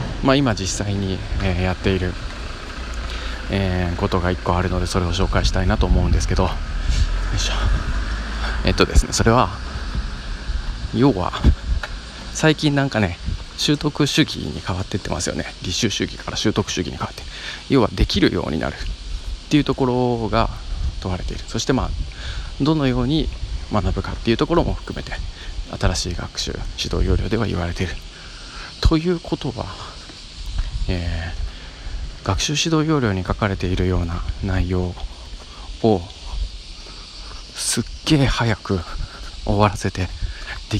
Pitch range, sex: 80-105 Hz, male